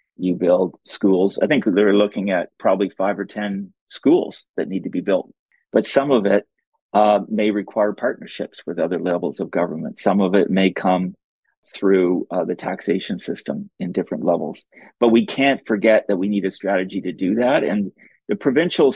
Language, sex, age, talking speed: English, male, 40-59, 185 wpm